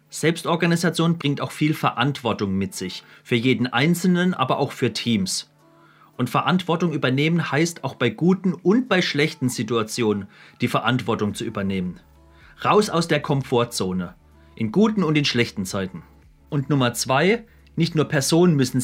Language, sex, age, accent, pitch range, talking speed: German, male, 30-49, German, 110-155 Hz, 145 wpm